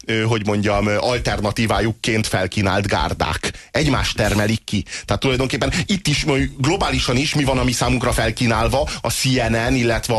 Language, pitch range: Hungarian, 100-125 Hz